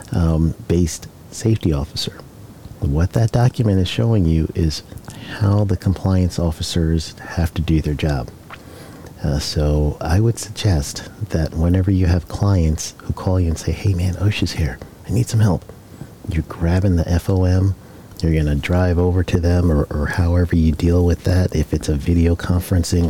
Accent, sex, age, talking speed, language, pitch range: American, male, 50-69, 170 wpm, English, 80-100 Hz